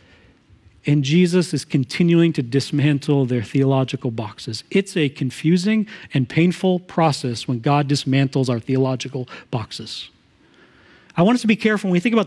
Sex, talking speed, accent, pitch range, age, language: male, 150 wpm, American, 140-195 Hz, 40-59, English